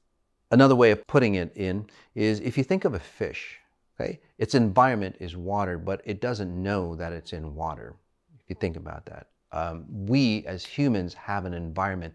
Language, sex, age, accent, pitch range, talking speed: English, male, 40-59, American, 85-110 Hz, 190 wpm